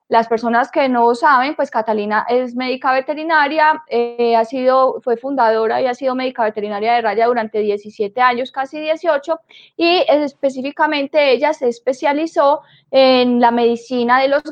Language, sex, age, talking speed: Spanish, female, 20-39, 155 wpm